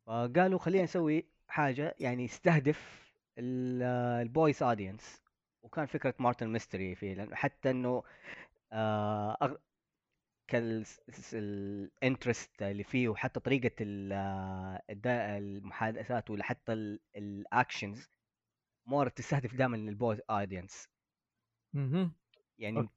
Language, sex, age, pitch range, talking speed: Arabic, female, 20-39, 105-130 Hz, 80 wpm